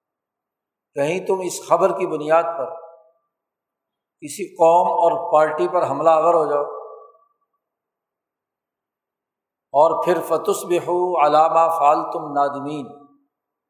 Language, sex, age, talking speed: Urdu, male, 60-79, 100 wpm